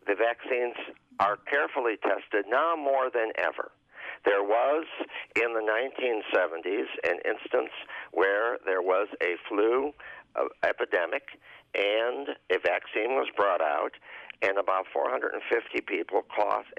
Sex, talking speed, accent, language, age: male, 120 wpm, American, English, 50-69